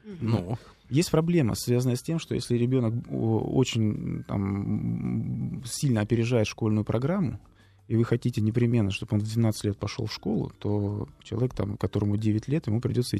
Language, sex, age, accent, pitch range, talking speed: Russian, male, 20-39, native, 105-125 Hz, 145 wpm